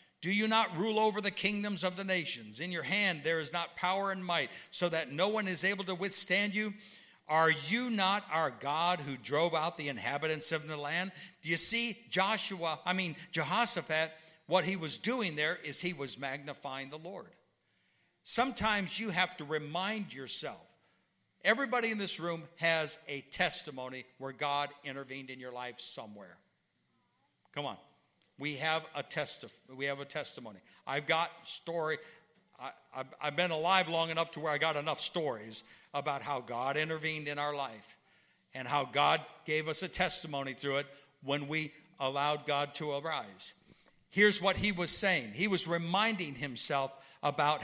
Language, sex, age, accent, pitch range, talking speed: English, male, 60-79, American, 145-185 Hz, 175 wpm